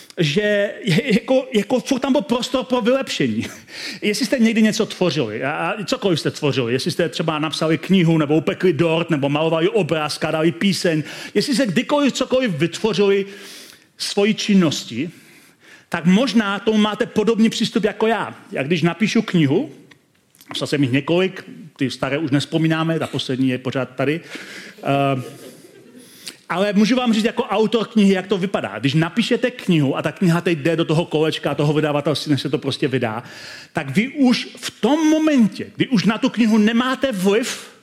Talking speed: 165 wpm